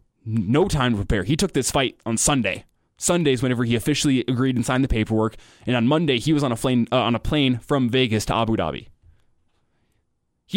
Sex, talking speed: male, 210 wpm